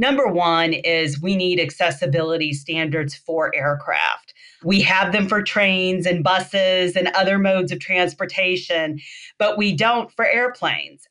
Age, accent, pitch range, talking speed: 40-59, American, 170-195 Hz, 140 wpm